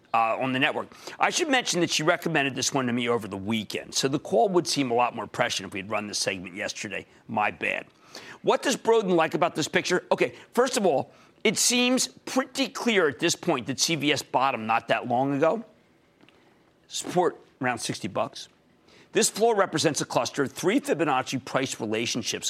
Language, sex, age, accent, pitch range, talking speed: English, male, 50-69, American, 130-200 Hz, 195 wpm